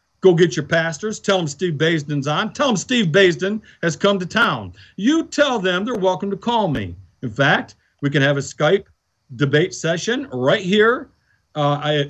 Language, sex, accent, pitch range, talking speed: English, male, American, 165-235 Hz, 185 wpm